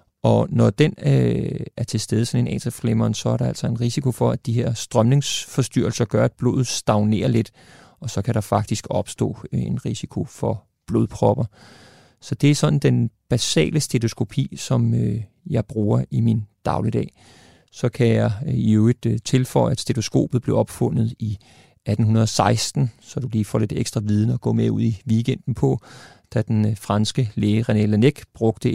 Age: 30-49